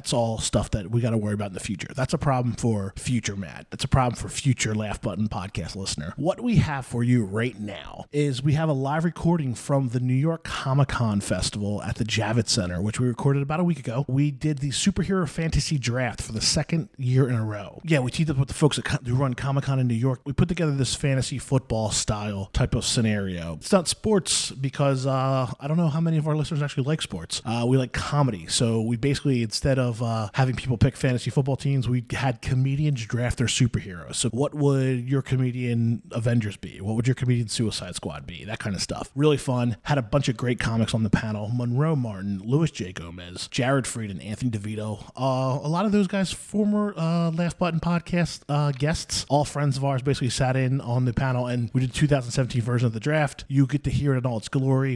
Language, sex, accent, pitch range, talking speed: English, male, American, 115-145 Hz, 230 wpm